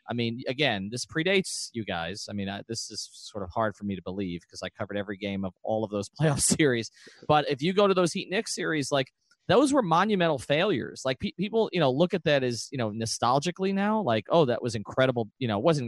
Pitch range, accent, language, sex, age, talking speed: 110-160 Hz, American, English, male, 30-49, 240 wpm